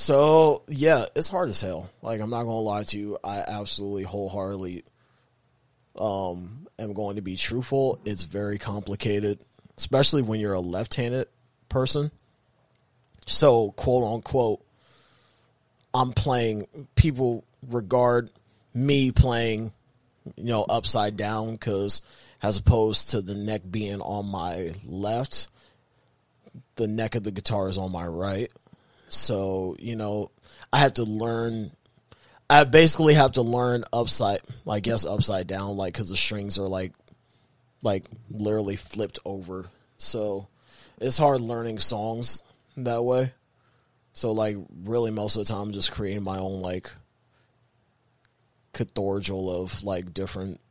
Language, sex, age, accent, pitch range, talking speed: English, male, 30-49, American, 100-125 Hz, 135 wpm